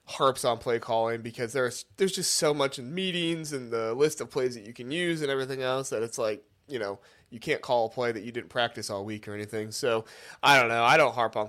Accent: American